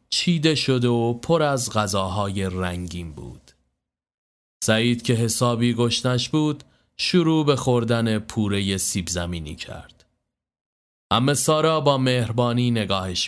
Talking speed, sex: 115 wpm, male